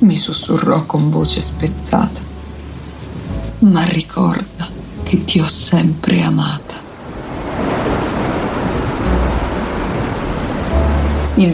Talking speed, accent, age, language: 70 wpm, native, 30-49, Italian